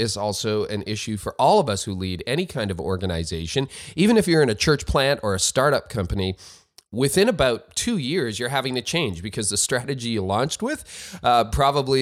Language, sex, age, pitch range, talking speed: English, male, 30-49, 95-130 Hz, 205 wpm